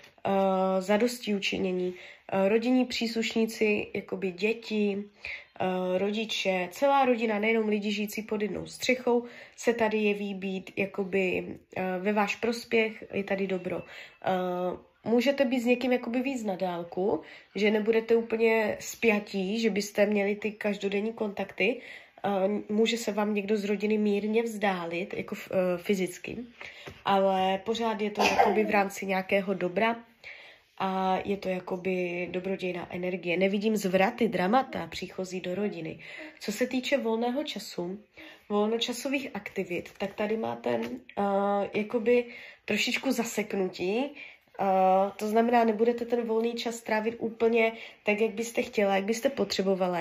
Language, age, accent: Czech, 20-39, native